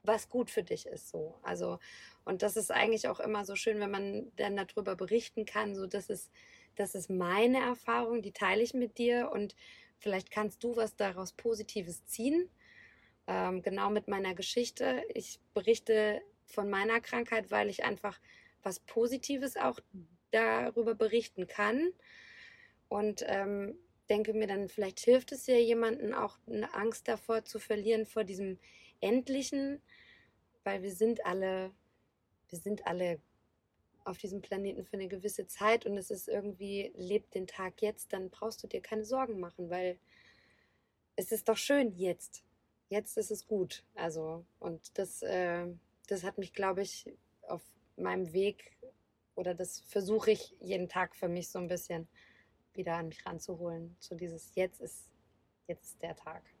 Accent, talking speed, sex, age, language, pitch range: German, 160 wpm, female, 20-39, German, 185-230 Hz